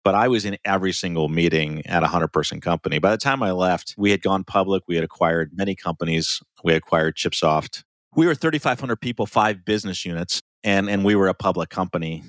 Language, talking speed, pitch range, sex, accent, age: English, 205 wpm, 80-100 Hz, male, American, 40-59